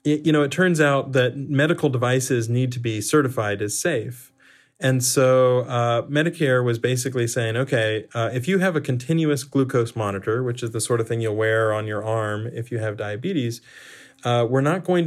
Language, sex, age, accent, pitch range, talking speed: English, male, 30-49, American, 120-145 Hz, 195 wpm